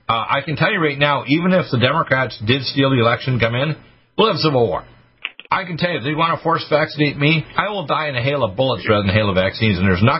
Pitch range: 110-145 Hz